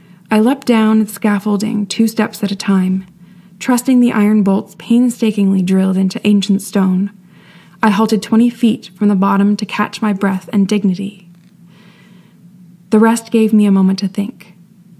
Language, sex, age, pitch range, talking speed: English, female, 20-39, 185-215 Hz, 155 wpm